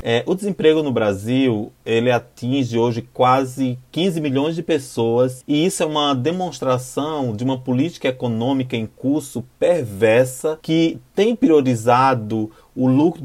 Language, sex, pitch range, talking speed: Portuguese, male, 125-155 Hz, 125 wpm